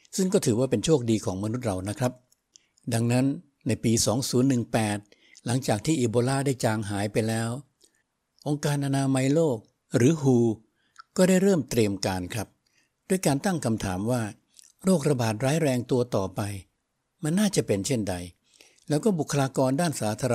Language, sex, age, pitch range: Thai, male, 60-79, 110-145 Hz